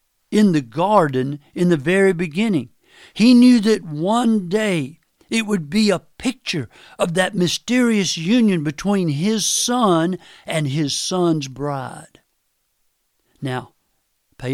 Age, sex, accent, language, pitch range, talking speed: 60-79, male, American, English, 145-205 Hz, 125 wpm